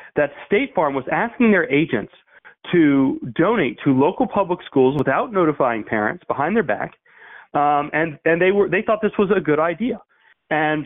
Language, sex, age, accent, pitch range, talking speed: English, male, 30-49, American, 125-165 Hz, 170 wpm